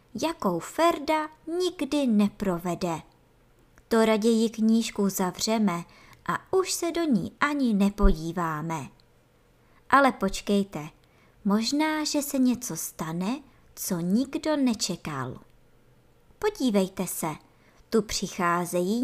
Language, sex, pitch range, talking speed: Czech, male, 180-255 Hz, 90 wpm